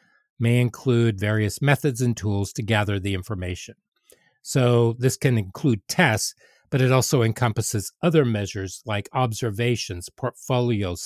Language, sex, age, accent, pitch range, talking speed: English, male, 40-59, American, 105-130 Hz, 130 wpm